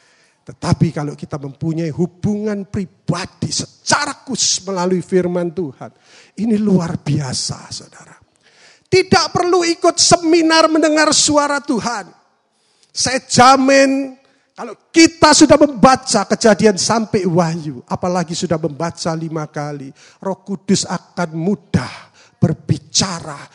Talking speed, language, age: 105 wpm, Indonesian, 40-59